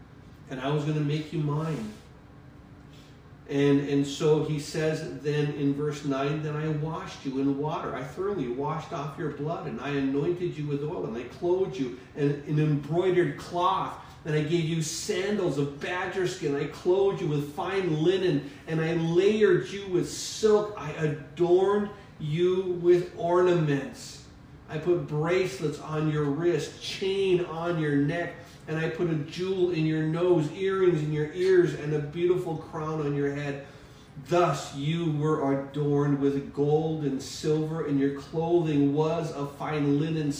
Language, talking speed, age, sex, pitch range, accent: English, 165 wpm, 40-59, male, 140-175 Hz, American